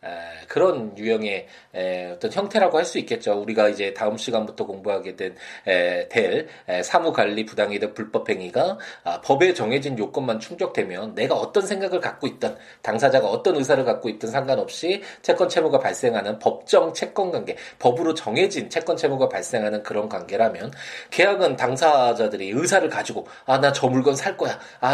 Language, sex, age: Korean, male, 20-39